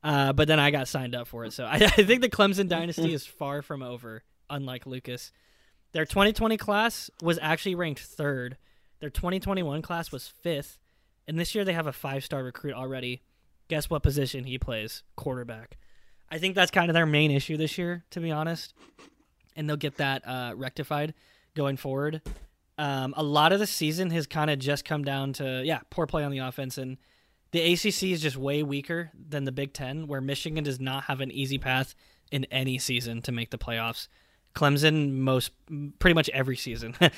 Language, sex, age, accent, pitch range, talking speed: English, male, 20-39, American, 130-160 Hz, 195 wpm